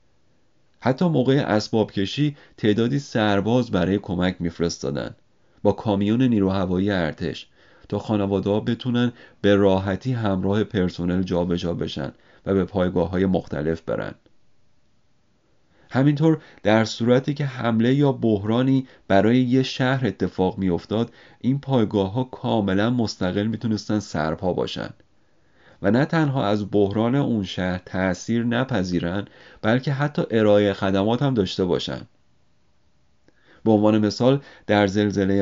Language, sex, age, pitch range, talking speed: Persian, male, 40-59, 95-120 Hz, 115 wpm